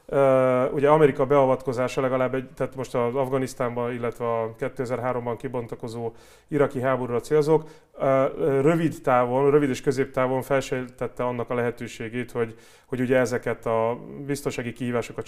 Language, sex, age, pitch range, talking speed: Hungarian, male, 30-49, 120-135 Hz, 125 wpm